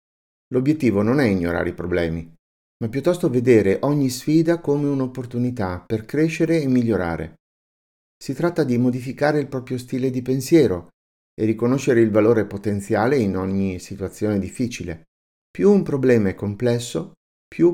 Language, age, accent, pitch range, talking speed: Italian, 50-69, native, 95-145 Hz, 140 wpm